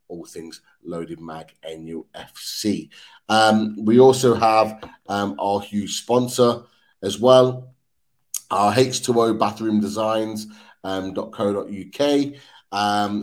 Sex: male